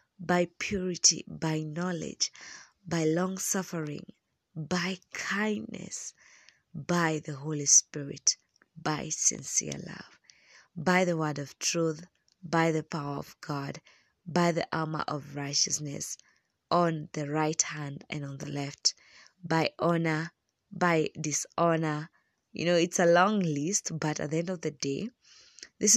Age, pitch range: 20-39, 150-180 Hz